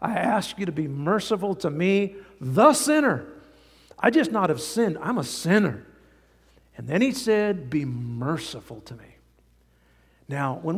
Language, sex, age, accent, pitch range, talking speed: English, male, 50-69, American, 135-195 Hz, 155 wpm